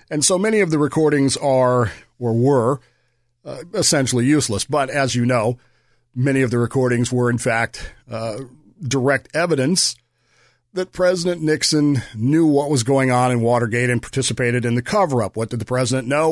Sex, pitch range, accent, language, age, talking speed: male, 120-150 Hz, American, English, 40-59, 170 wpm